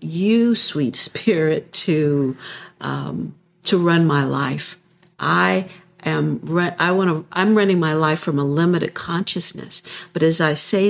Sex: female